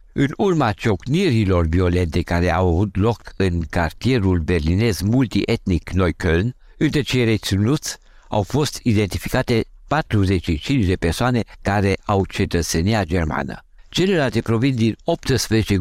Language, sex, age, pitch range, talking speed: Romanian, male, 60-79, 90-125 Hz, 115 wpm